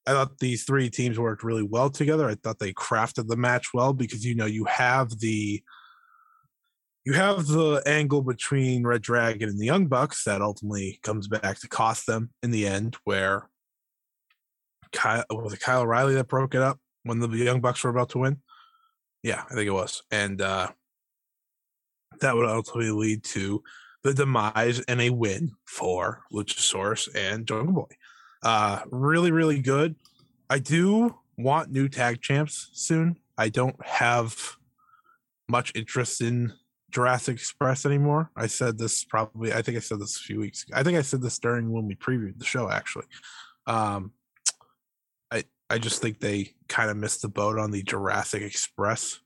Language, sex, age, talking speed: English, male, 20-39, 175 wpm